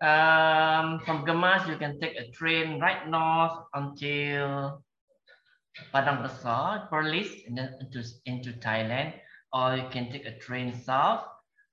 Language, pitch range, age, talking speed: English, 125-165 Hz, 20-39, 135 wpm